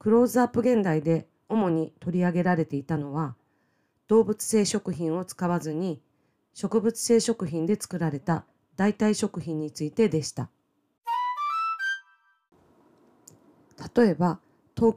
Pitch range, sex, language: 160-215 Hz, female, Japanese